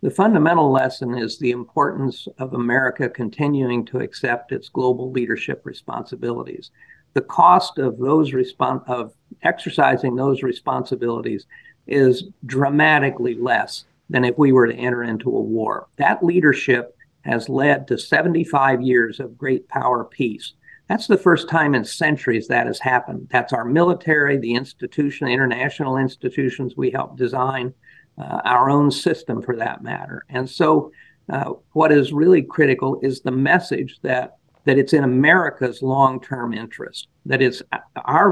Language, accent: English, American